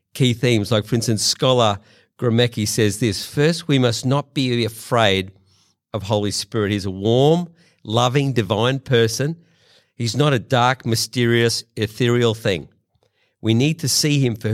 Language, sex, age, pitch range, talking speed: English, male, 50-69, 110-135 Hz, 155 wpm